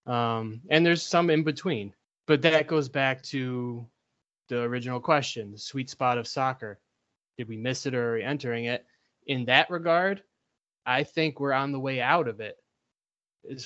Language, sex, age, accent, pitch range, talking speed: English, male, 20-39, American, 115-135 Hz, 180 wpm